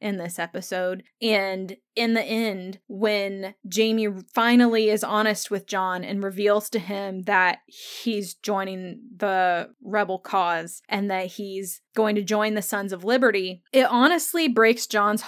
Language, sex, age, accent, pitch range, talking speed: English, female, 20-39, American, 205-260 Hz, 150 wpm